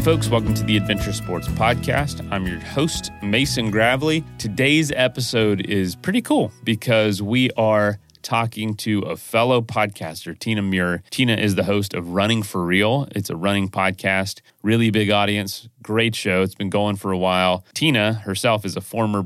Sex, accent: male, American